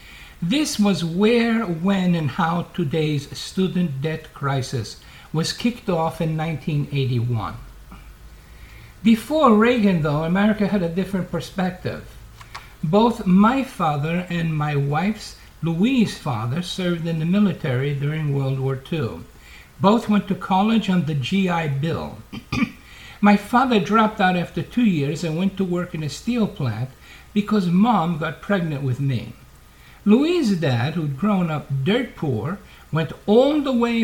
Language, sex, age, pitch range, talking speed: English, male, 60-79, 150-200 Hz, 140 wpm